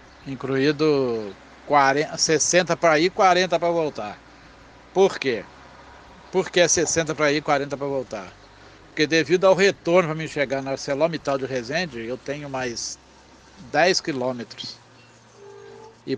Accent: Brazilian